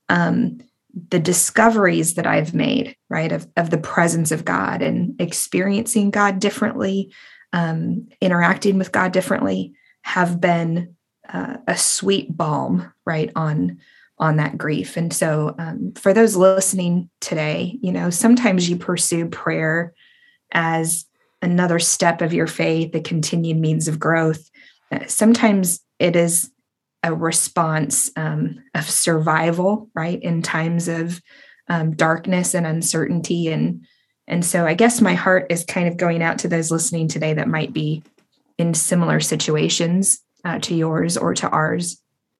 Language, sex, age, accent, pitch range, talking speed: English, female, 20-39, American, 160-190 Hz, 145 wpm